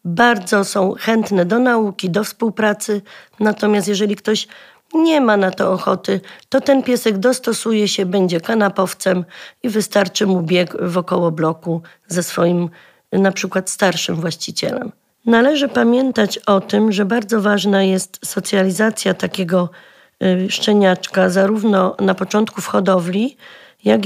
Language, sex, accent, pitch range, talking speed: Polish, female, native, 185-220 Hz, 125 wpm